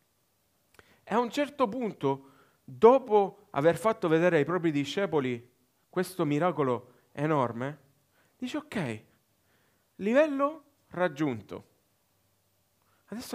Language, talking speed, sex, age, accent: Italian, 90 wpm, male, 40-59, native